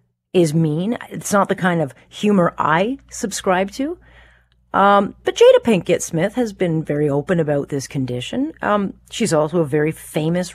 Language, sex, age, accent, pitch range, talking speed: English, female, 40-59, American, 145-215 Hz, 165 wpm